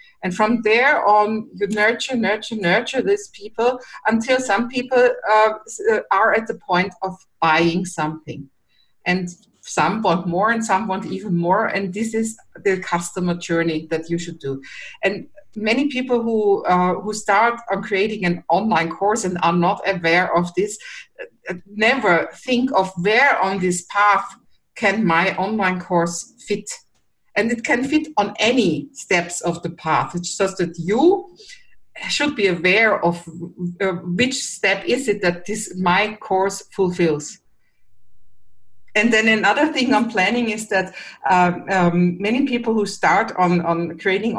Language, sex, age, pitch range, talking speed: English, female, 50-69, 175-225 Hz, 155 wpm